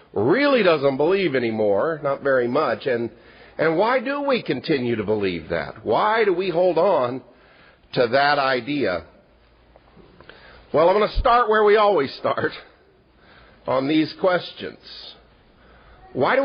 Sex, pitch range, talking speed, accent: male, 125-195 Hz, 140 wpm, American